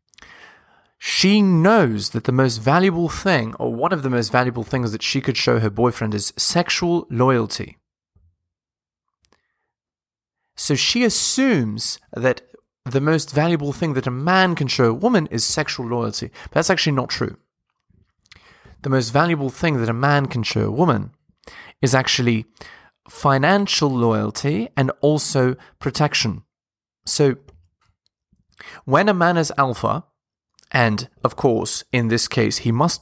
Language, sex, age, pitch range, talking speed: English, male, 20-39, 115-150 Hz, 140 wpm